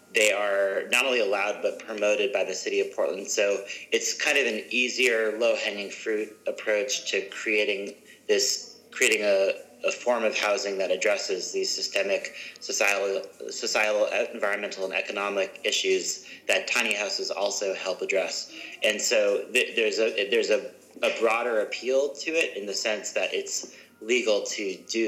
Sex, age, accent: male, 30-49, American